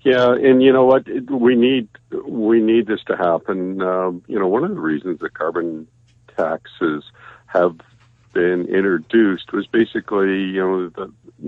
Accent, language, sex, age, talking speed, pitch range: American, English, male, 50-69, 155 wpm, 80-110 Hz